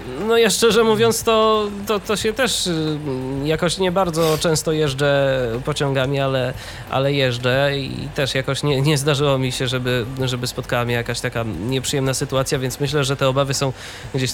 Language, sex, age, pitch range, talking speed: Polish, male, 20-39, 125-175 Hz, 165 wpm